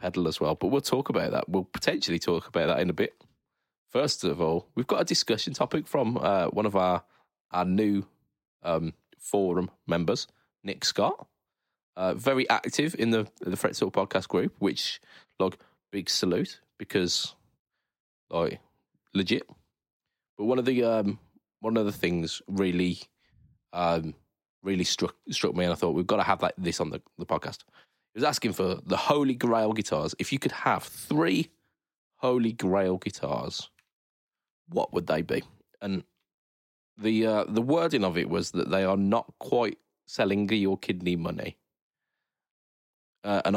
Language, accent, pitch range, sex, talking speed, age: English, British, 90-110 Hz, male, 165 wpm, 20-39